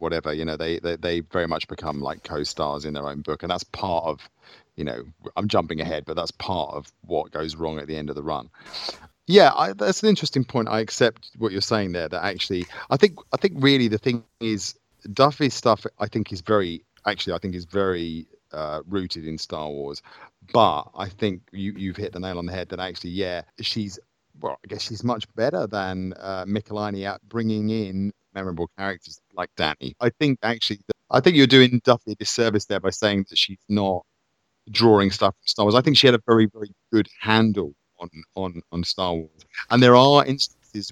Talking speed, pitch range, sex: 215 wpm, 85-110 Hz, male